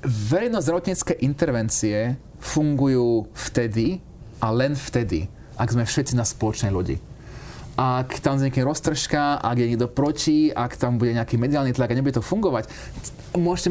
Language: Slovak